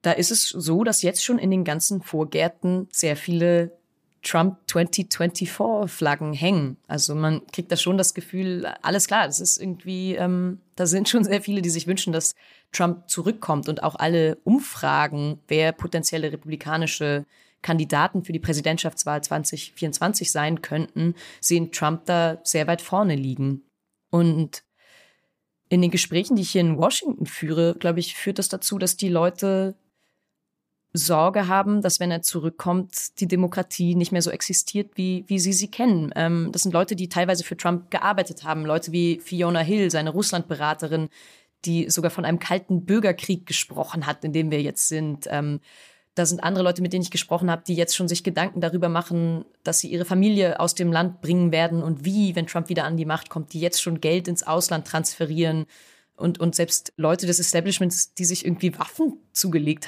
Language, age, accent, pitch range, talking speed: German, 30-49, German, 160-185 Hz, 180 wpm